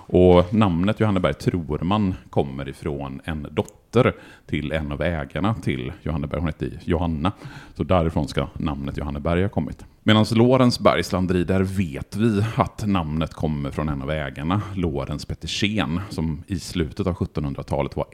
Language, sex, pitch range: Swedish, male, 75-100 Hz